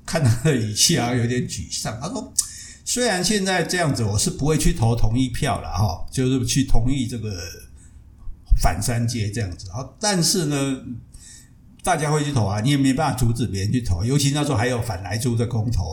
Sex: male